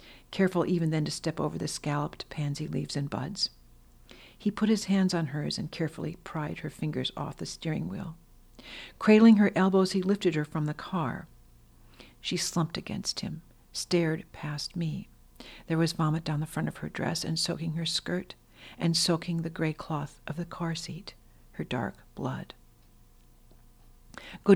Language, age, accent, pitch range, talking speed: English, 60-79, American, 150-175 Hz, 170 wpm